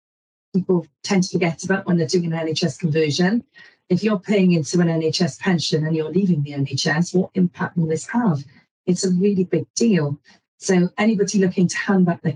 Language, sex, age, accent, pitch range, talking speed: English, female, 40-59, British, 160-185 Hz, 195 wpm